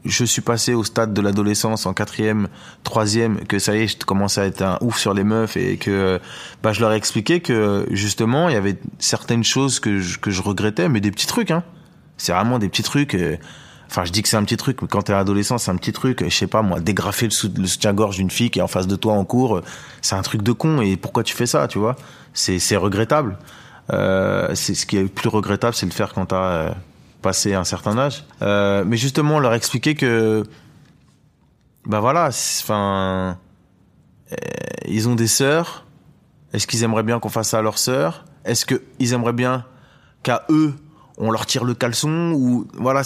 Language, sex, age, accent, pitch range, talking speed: French, male, 20-39, French, 100-130 Hz, 215 wpm